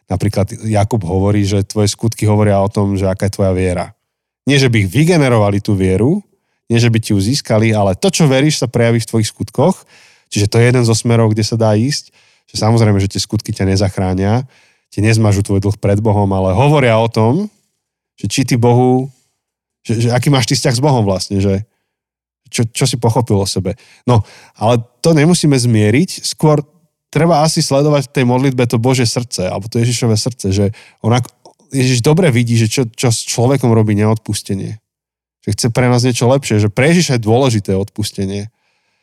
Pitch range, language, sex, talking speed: 105-130 Hz, Slovak, male, 190 wpm